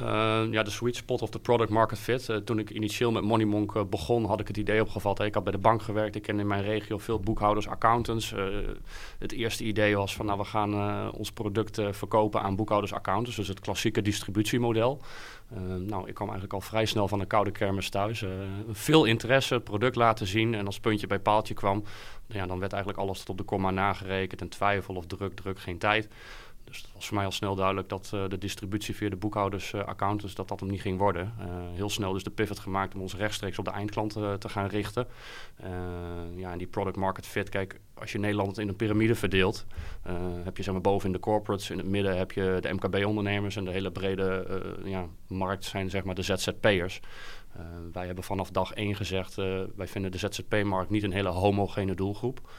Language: Dutch